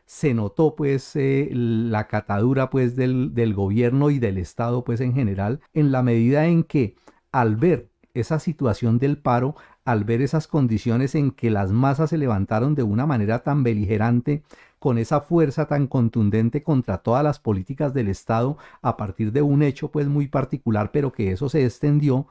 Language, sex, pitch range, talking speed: Spanish, male, 120-155 Hz, 180 wpm